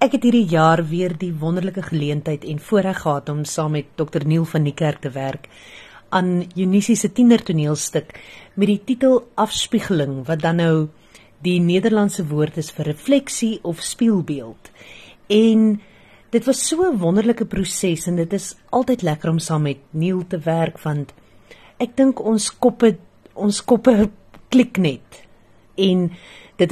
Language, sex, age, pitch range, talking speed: English, female, 40-59, 150-205 Hz, 150 wpm